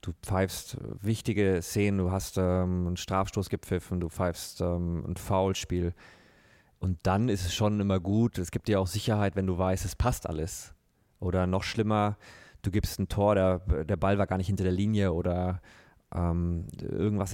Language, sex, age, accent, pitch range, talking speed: German, male, 30-49, German, 90-105 Hz, 180 wpm